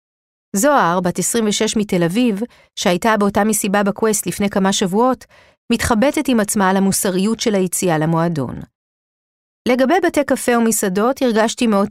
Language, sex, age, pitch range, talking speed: Hebrew, female, 40-59, 175-230 Hz, 130 wpm